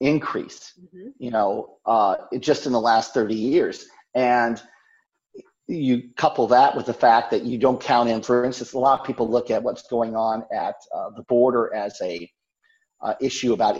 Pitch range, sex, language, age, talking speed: 115-140 Hz, male, English, 50-69, 185 wpm